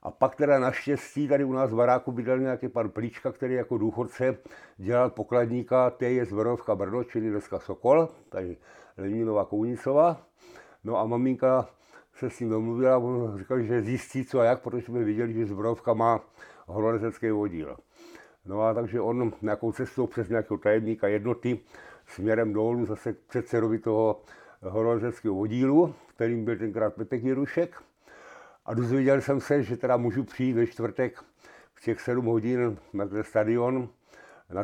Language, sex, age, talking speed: Czech, male, 60-79, 150 wpm